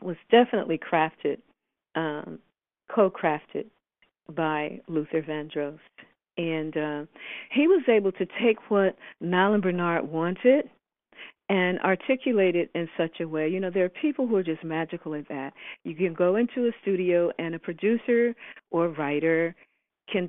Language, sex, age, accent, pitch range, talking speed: English, female, 50-69, American, 165-205 Hz, 150 wpm